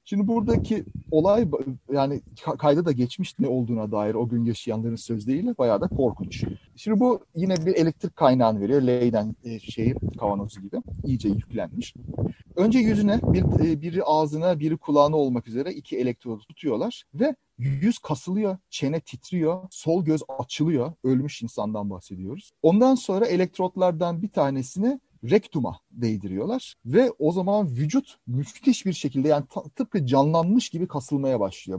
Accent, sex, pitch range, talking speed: native, male, 115-185 Hz, 140 wpm